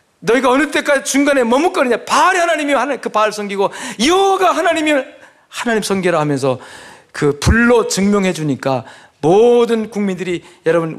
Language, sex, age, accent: Korean, male, 40-59, native